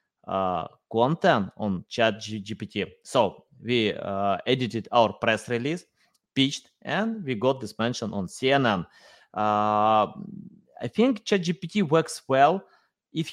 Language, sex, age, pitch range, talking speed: English, male, 20-39, 115-180 Hz, 115 wpm